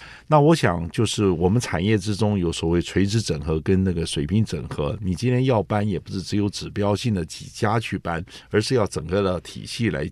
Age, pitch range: 50-69, 95-130 Hz